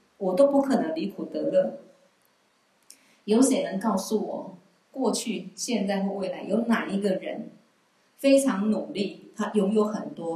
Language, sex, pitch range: Chinese, female, 190-250 Hz